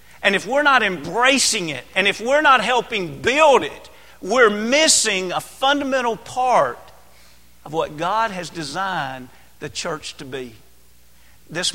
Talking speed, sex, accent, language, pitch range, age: 145 wpm, male, American, English, 140-190 Hz, 40-59